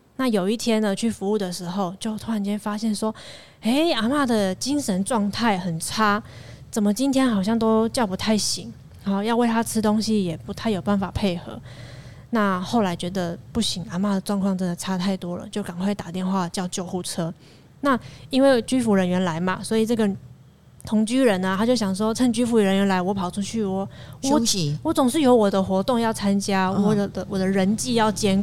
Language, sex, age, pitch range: Chinese, female, 20-39, 185-225 Hz